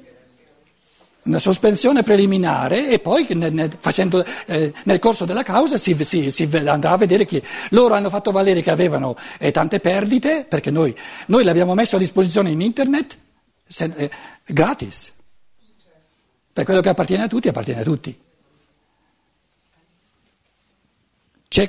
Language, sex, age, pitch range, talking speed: Italian, male, 60-79, 170-245 Hz, 145 wpm